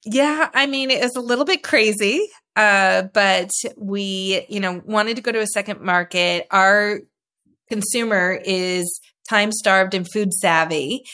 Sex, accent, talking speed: female, American, 155 wpm